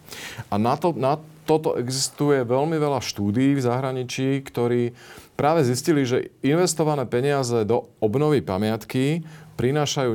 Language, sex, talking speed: Slovak, male, 125 wpm